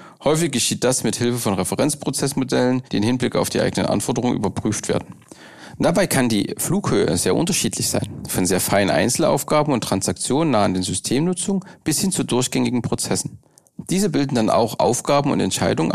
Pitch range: 105-140 Hz